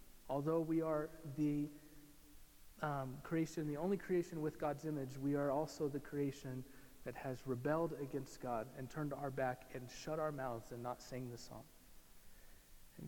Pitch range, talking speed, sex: 125-145 Hz, 165 wpm, male